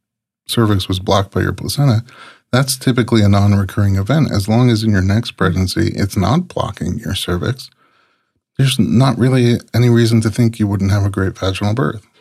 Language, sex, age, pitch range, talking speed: English, male, 30-49, 95-115 Hz, 180 wpm